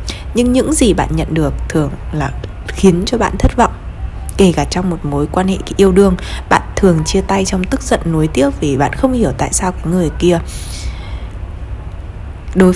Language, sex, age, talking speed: Vietnamese, female, 20-39, 195 wpm